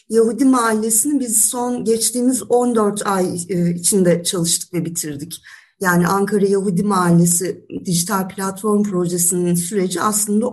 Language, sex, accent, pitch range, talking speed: Turkish, female, native, 175-215 Hz, 115 wpm